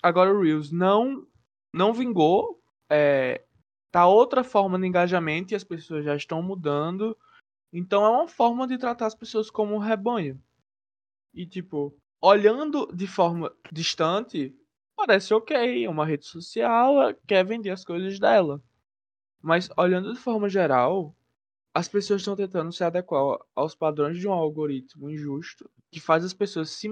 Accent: Brazilian